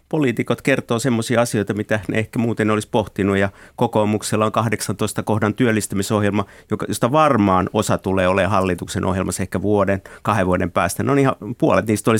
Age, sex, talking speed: 50-69, male, 160 wpm